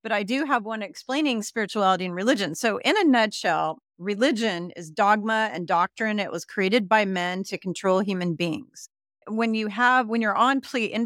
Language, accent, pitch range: English, American, 180-220 Hz